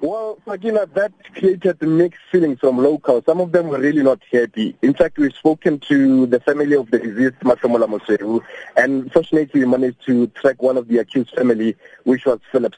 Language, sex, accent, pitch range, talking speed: English, male, South African, 125-165 Hz, 195 wpm